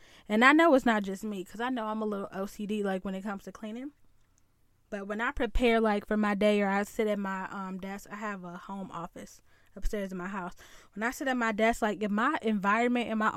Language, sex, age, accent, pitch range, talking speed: English, female, 10-29, American, 195-225 Hz, 250 wpm